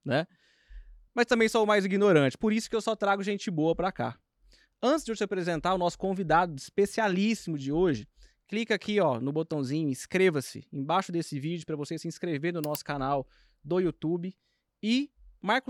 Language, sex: Portuguese, male